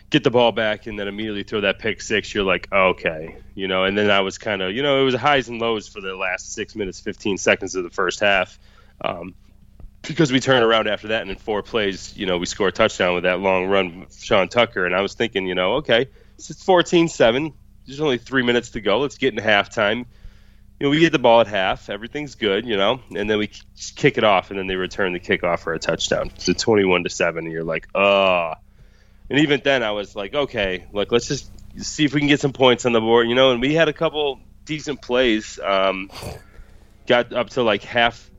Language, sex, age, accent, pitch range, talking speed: English, male, 30-49, American, 95-130 Hz, 240 wpm